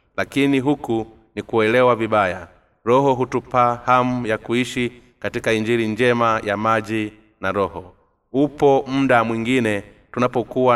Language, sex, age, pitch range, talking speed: Swahili, male, 30-49, 105-125 Hz, 115 wpm